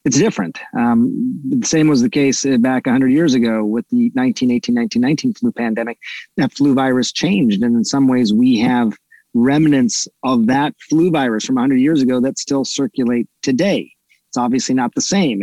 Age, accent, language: 40-59, American, English